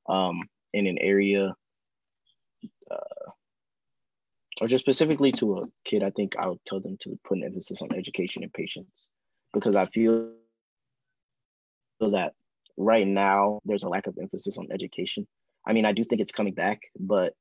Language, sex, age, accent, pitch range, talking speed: English, male, 20-39, American, 95-115 Hz, 165 wpm